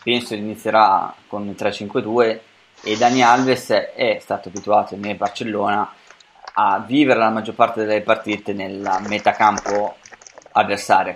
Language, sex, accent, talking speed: Italian, male, native, 125 wpm